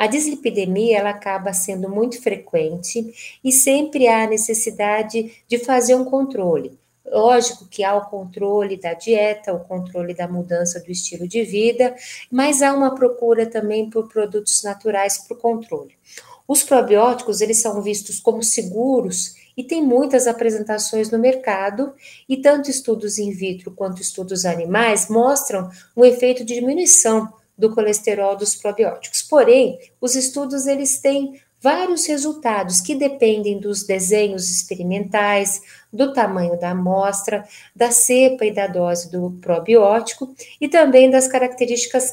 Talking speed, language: 140 wpm, Portuguese